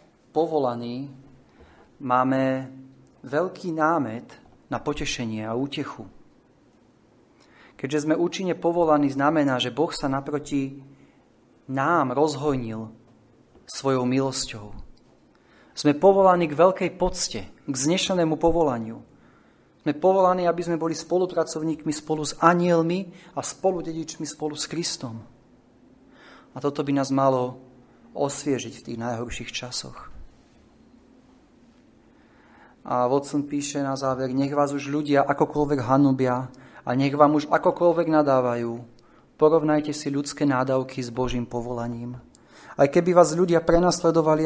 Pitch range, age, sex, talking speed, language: 125-155 Hz, 30-49, male, 110 wpm, Slovak